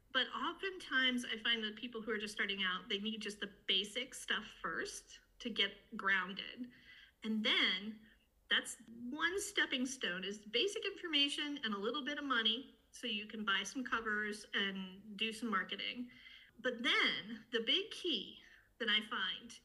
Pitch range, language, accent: 215-275 Hz, English, American